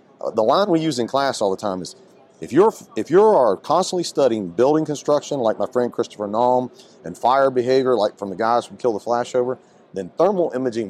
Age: 40-59